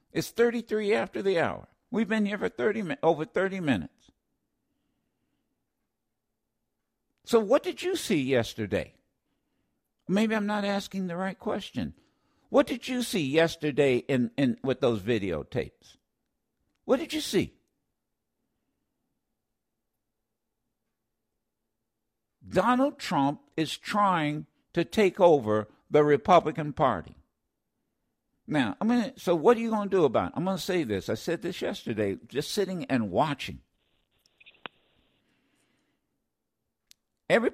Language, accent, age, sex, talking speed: English, American, 60-79, male, 125 wpm